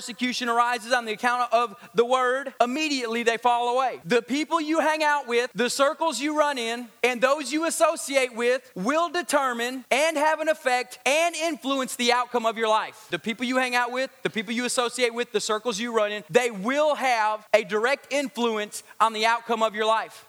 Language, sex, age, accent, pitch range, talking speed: English, male, 30-49, American, 245-310 Hz, 205 wpm